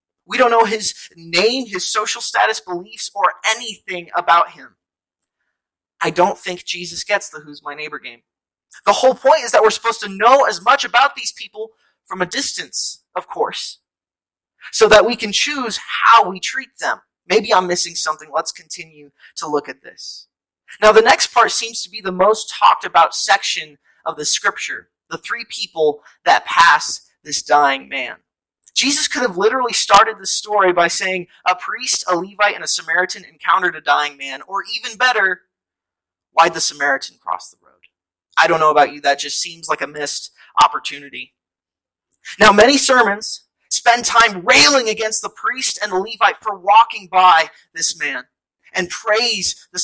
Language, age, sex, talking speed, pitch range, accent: English, 20-39, male, 175 wpm, 145-220 Hz, American